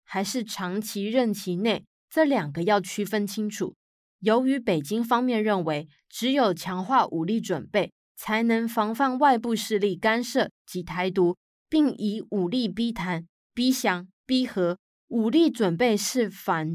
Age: 20-39